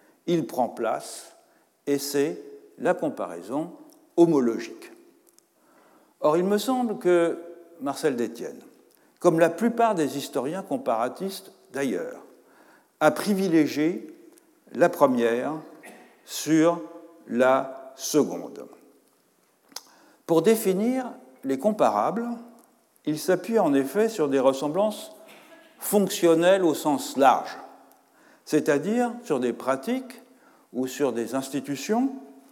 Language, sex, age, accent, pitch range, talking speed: French, male, 60-79, French, 150-250 Hz, 95 wpm